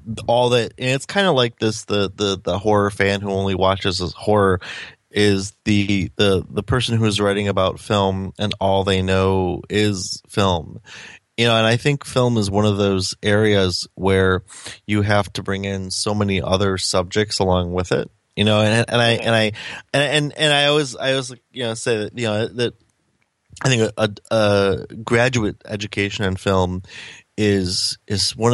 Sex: male